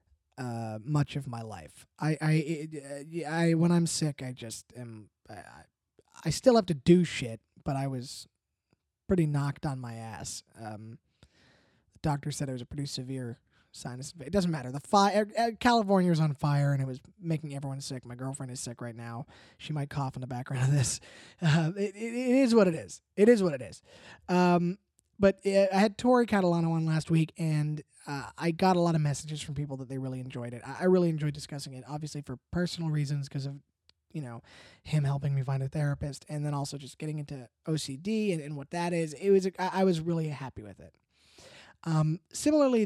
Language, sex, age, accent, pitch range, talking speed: English, male, 20-39, American, 130-170 Hz, 210 wpm